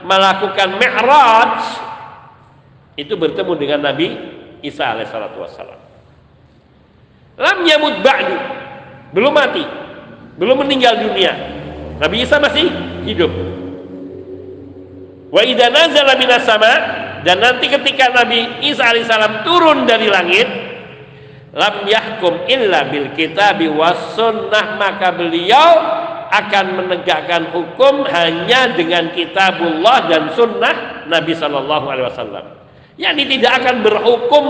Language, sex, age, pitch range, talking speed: Indonesian, male, 50-69, 180-265 Hz, 90 wpm